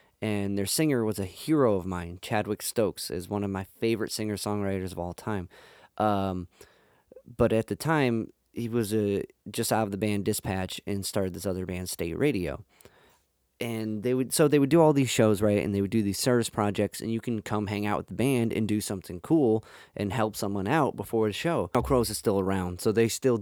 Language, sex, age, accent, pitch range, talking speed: English, male, 20-39, American, 95-115 Hz, 220 wpm